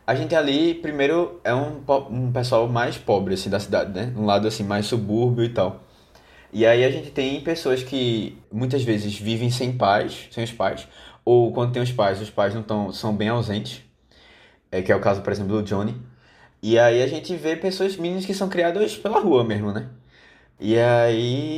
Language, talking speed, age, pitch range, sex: Portuguese, 205 wpm, 20-39, 105-130 Hz, male